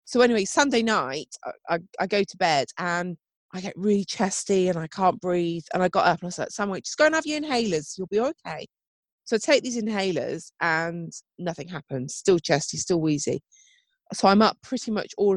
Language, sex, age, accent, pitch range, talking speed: English, female, 30-49, British, 175-235 Hz, 210 wpm